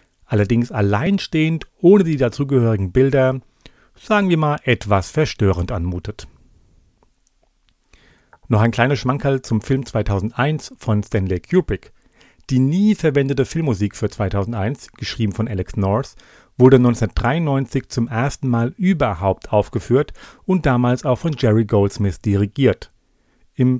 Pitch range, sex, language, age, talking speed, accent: 105-135 Hz, male, German, 40-59, 120 wpm, German